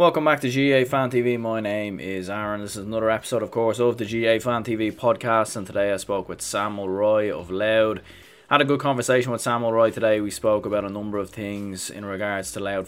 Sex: male